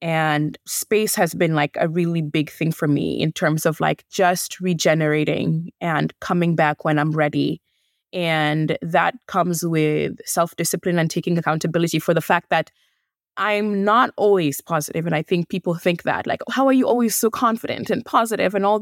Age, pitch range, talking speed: 20-39, 170-225 Hz, 180 wpm